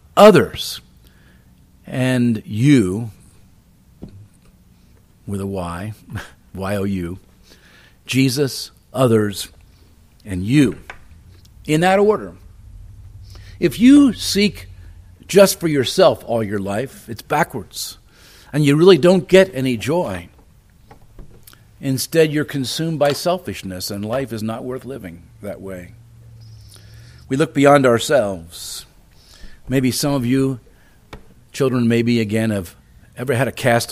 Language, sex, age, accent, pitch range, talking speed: English, male, 50-69, American, 95-140 Hz, 110 wpm